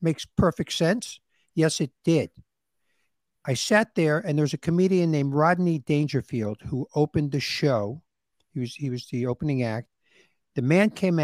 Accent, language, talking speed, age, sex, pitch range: American, English, 160 wpm, 60-79, male, 145-185 Hz